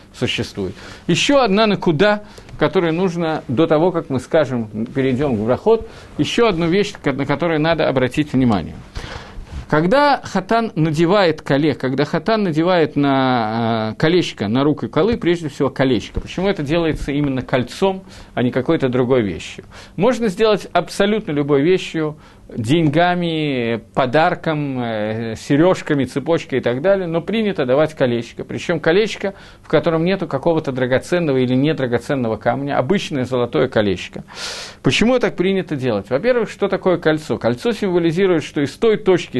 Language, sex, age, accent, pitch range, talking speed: Russian, male, 50-69, native, 125-180 Hz, 140 wpm